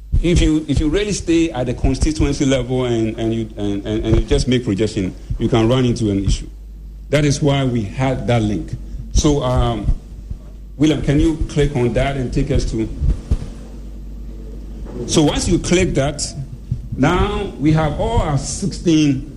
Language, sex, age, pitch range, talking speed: English, male, 50-69, 110-145 Hz, 175 wpm